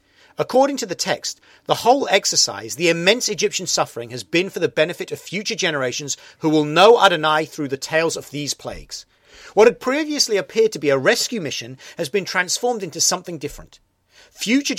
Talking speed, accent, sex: 185 wpm, British, male